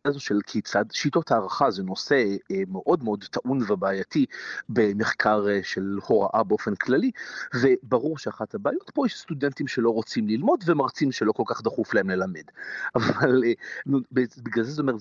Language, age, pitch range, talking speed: Hebrew, 40-59, 105-145 Hz, 140 wpm